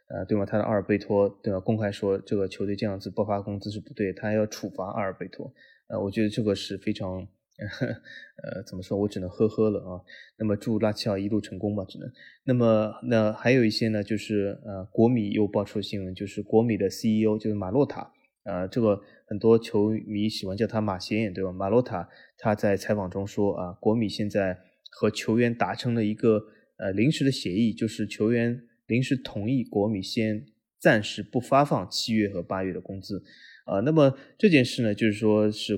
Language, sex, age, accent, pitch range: Chinese, male, 20-39, native, 100-120 Hz